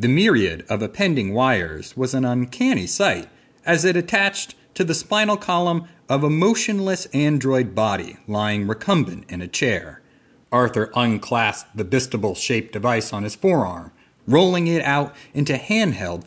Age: 30-49